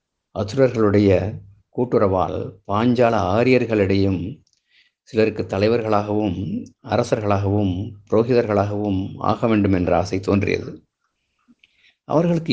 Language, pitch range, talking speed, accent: Tamil, 100-120 Hz, 65 wpm, native